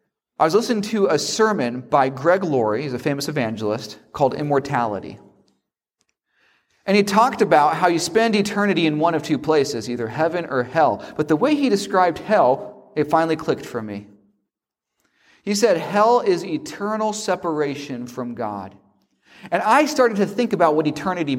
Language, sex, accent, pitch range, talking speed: English, male, American, 140-215 Hz, 165 wpm